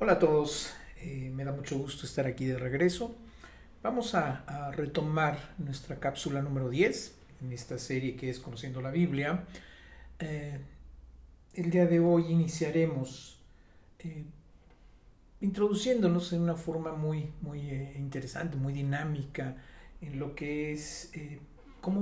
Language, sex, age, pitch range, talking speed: Spanish, male, 50-69, 130-165 Hz, 140 wpm